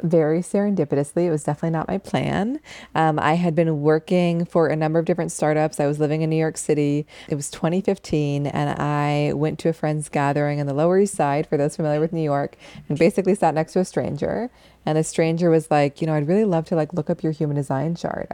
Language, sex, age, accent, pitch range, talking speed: English, female, 20-39, American, 145-170 Hz, 235 wpm